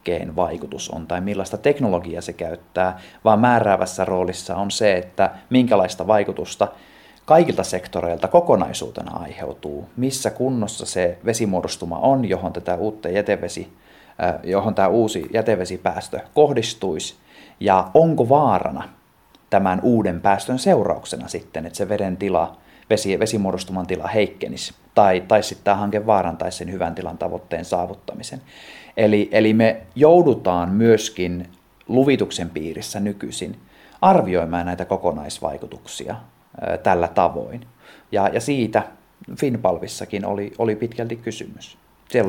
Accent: native